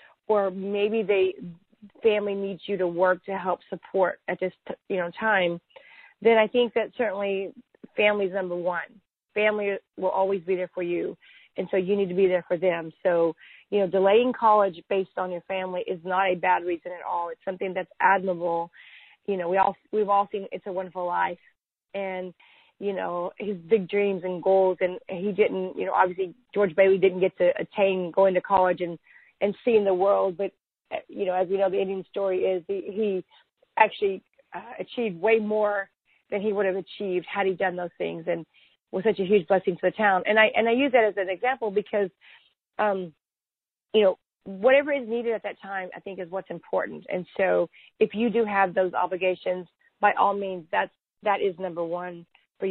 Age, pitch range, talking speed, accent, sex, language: 30-49, 185-210 Hz, 200 wpm, American, female, English